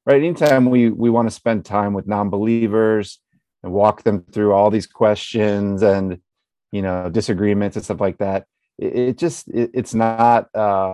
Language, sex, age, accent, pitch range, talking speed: English, male, 30-49, American, 95-110 Hz, 170 wpm